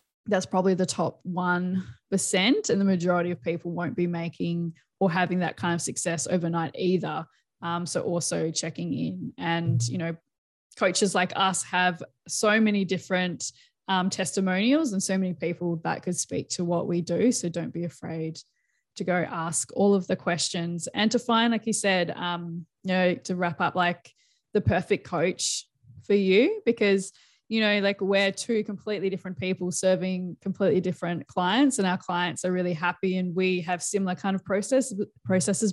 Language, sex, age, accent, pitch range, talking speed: English, female, 20-39, Australian, 170-190 Hz, 175 wpm